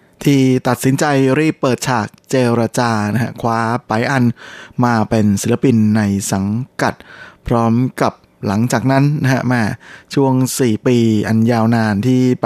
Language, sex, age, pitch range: Thai, male, 20-39, 115-135 Hz